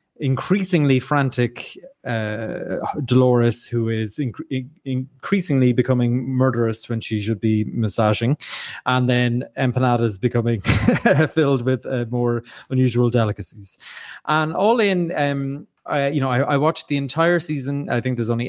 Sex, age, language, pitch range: male, 20-39, English, 115-135 Hz